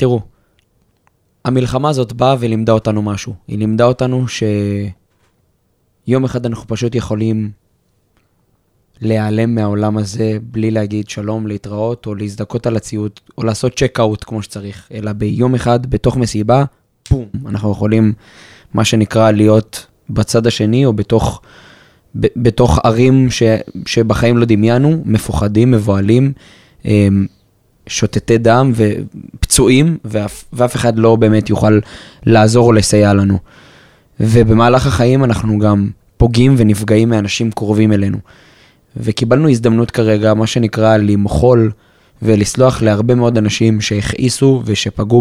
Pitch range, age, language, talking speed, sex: 105-120 Hz, 20-39, Hebrew, 120 wpm, male